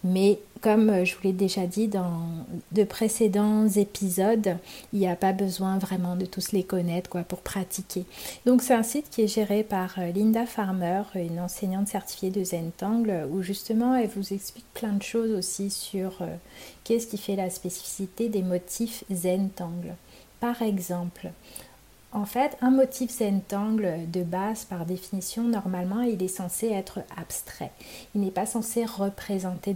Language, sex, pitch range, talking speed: French, female, 185-215 Hz, 160 wpm